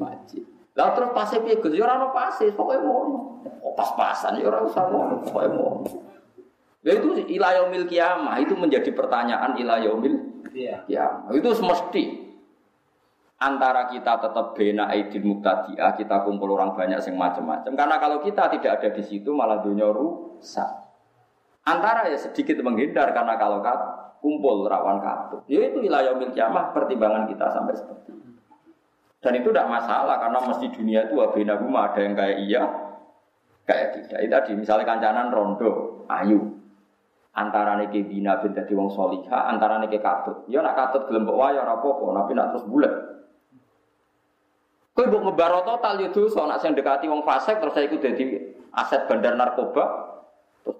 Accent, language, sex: native, Indonesian, male